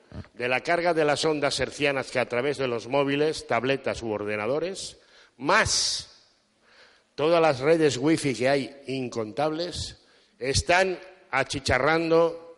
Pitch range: 120-155 Hz